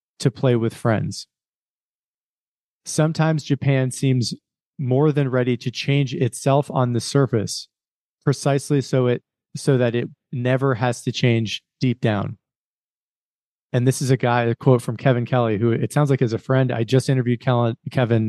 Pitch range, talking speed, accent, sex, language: 115-135 Hz, 165 wpm, American, male, English